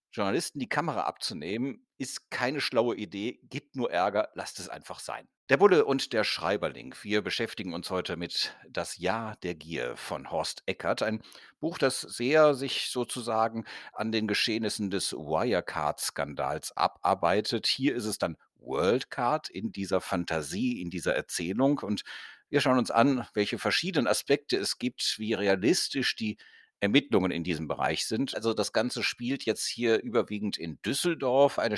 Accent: German